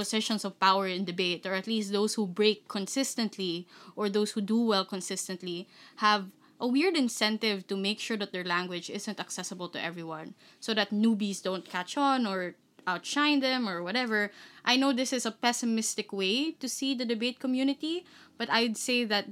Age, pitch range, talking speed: 20-39, 190-245 Hz, 185 wpm